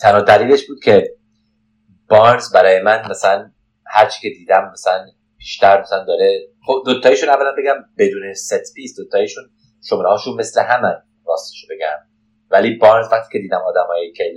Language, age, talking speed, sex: Persian, 30-49, 155 wpm, male